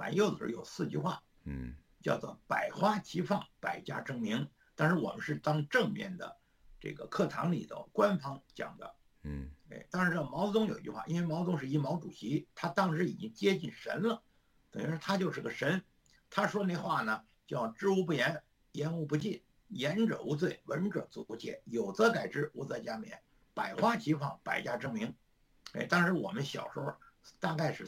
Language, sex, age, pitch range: Chinese, male, 60-79, 150-200 Hz